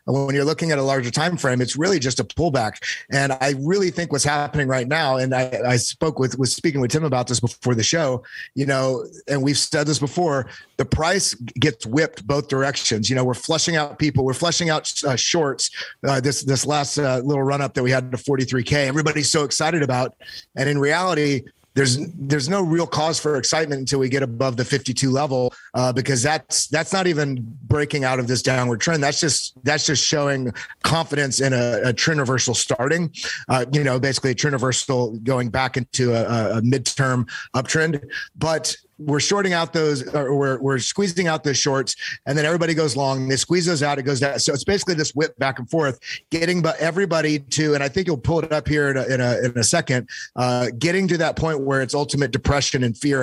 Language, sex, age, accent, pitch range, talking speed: English, male, 30-49, American, 130-155 Hz, 215 wpm